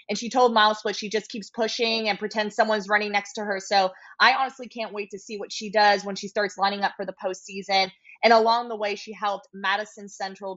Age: 20-39